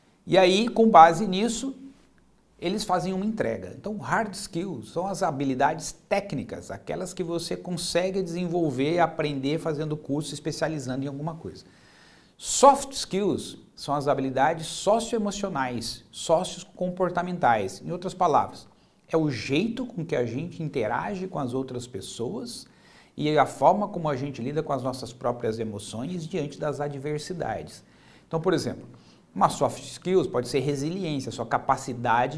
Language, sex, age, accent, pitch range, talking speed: Portuguese, male, 50-69, Brazilian, 140-185 Hz, 145 wpm